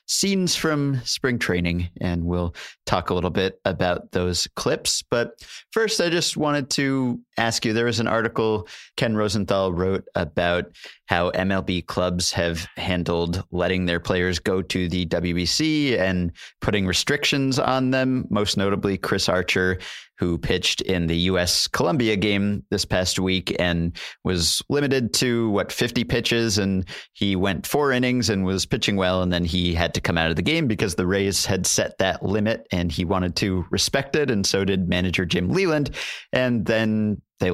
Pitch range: 90-110 Hz